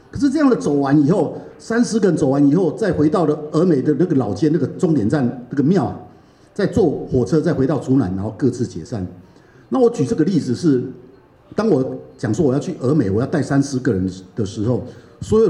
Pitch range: 120-175 Hz